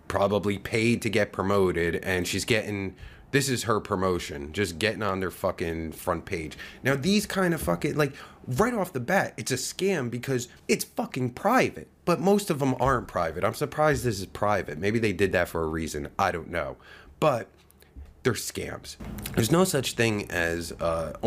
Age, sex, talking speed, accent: 30-49, male, 185 wpm, American